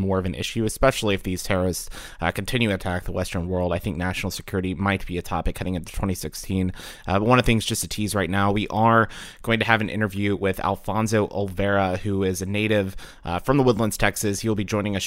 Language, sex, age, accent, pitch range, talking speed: English, male, 30-49, American, 95-105 Hz, 235 wpm